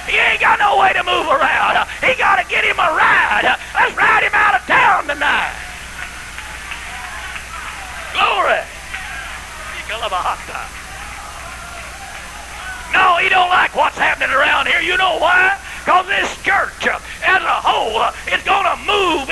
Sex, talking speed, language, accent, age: male, 135 wpm, English, American, 40-59